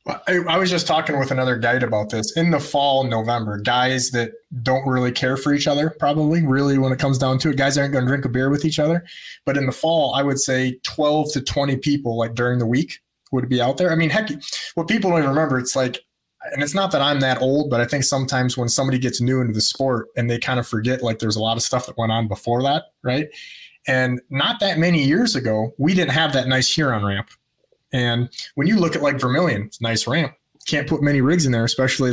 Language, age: English, 30-49